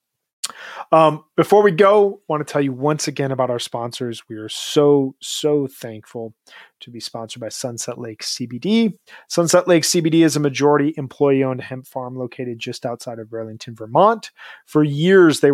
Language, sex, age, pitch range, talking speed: English, male, 30-49, 120-155 Hz, 170 wpm